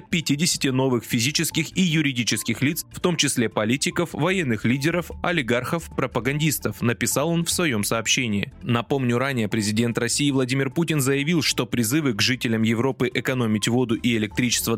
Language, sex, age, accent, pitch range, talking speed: Russian, male, 20-39, native, 115-150 Hz, 140 wpm